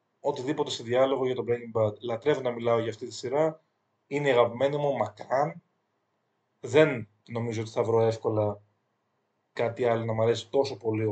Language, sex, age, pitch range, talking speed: Greek, male, 30-49, 115-145 Hz, 165 wpm